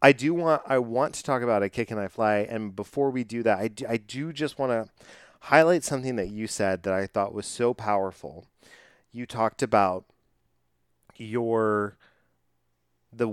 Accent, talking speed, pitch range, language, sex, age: American, 180 wpm, 95-125 Hz, English, male, 30-49